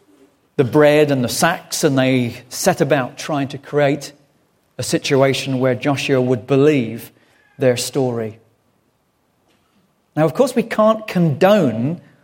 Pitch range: 145-200 Hz